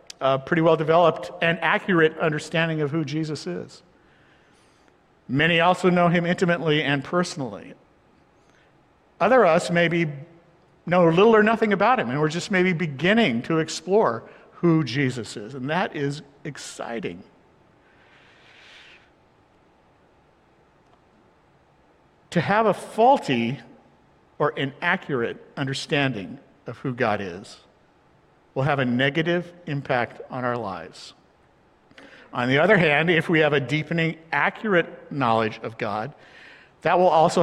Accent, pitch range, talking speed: American, 150-190 Hz, 120 wpm